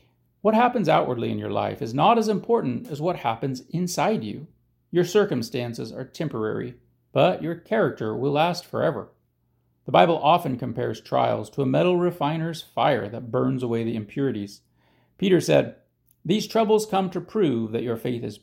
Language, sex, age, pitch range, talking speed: English, male, 40-59, 115-180 Hz, 165 wpm